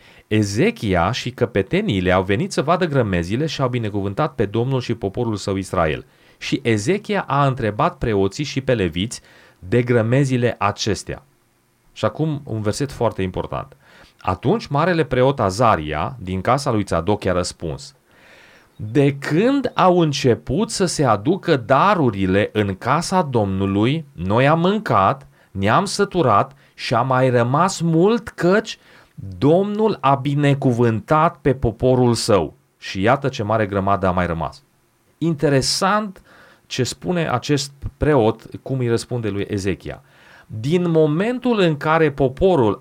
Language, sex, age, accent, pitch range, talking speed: Romanian, male, 30-49, native, 105-155 Hz, 135 wpm